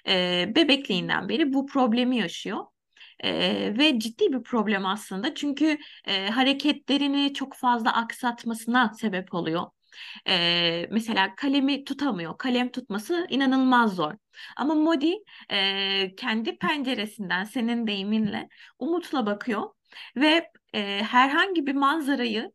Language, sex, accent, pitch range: Turkish, female, native, 215-295 Hz